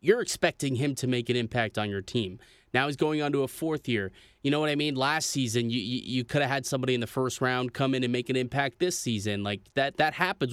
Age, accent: 20-39, American